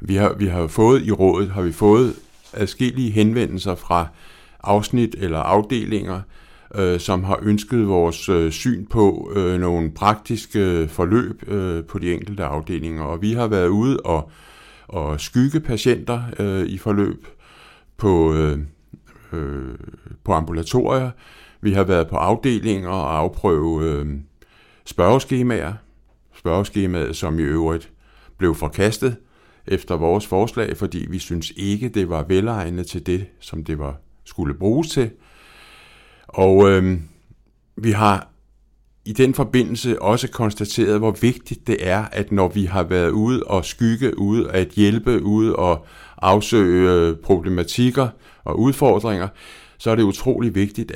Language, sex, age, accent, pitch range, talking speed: Danish, male, 60-79, native, 85-110 Hz, 125 wpm